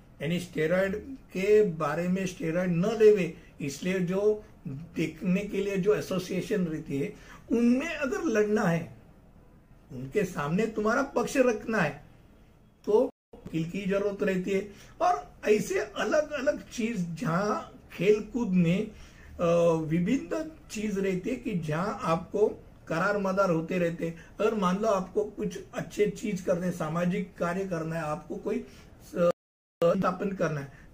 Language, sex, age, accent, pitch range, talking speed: Hindi, male, 60-79, native, 170-215 Hz, 135 wpm